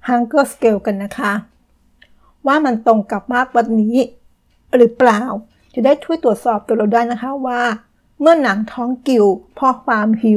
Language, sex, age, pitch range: Thai, female, 60-79, 220-250 Hz